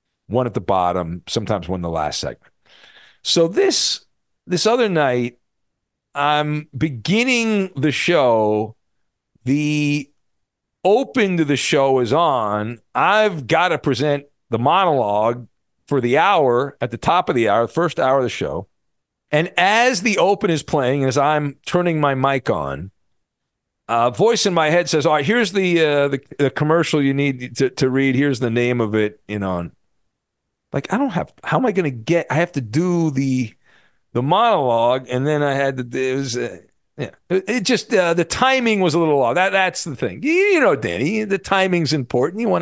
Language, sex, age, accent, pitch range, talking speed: English, male, 50-69, American, 125-185 Hz, 185 wpm